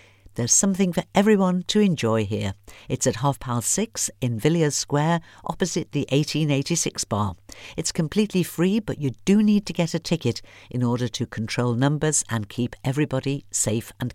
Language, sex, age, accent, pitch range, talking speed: English, female, 50-69, British, 110-165 Hz, 170 wpm